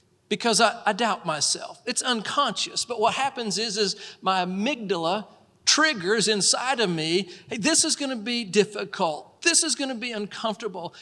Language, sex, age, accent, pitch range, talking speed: English, male, 40-59, American, 190-250 Hz, 170 wpm